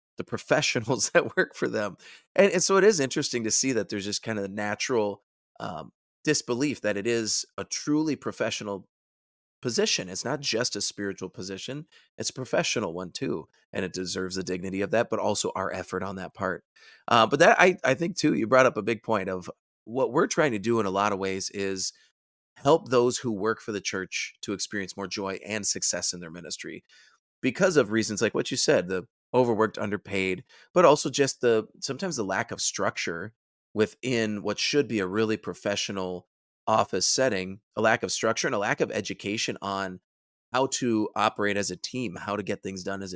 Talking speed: 205 wpm